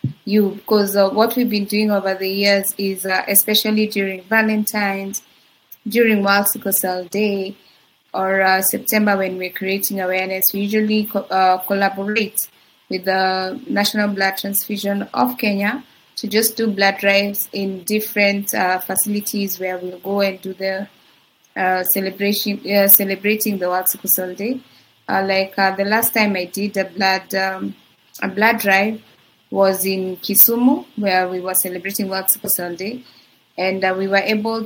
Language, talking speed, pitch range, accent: English, 160 wpm, 190-215 Hz, Indian